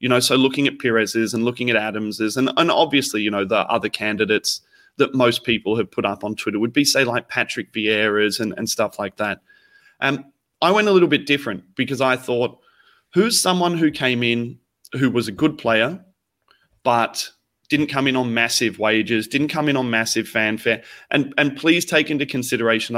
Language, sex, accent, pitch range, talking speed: English, male, Australian, 110-135 Hz, 200 wpm